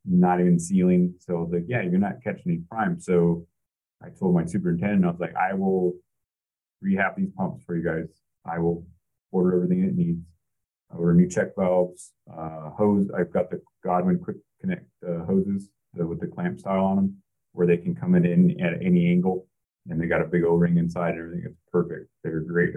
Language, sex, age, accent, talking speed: English, male, 30-49, American, 210 wpm